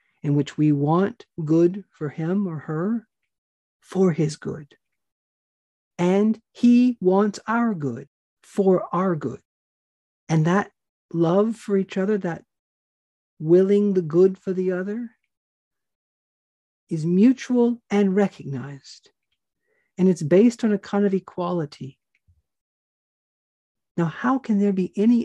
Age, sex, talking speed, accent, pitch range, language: 50-69, male, 120 wpm, American, 165-220 Hz, English